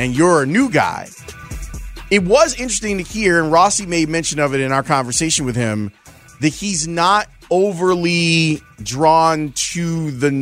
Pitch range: 125-170 Hz